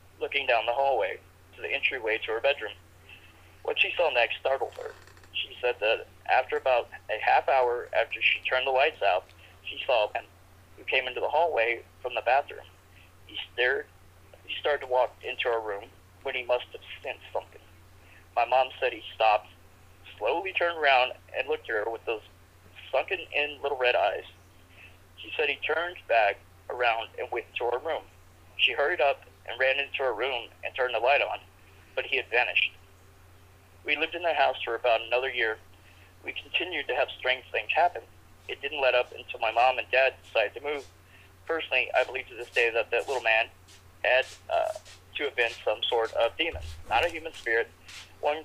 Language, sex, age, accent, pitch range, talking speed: English, male, 30-49, American, 95-145 Hz, 195 wpm